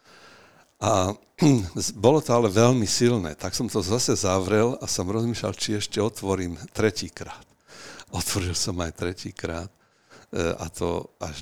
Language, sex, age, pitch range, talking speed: Slovak, male, 60-79, 90-105 Hz, 145 wpm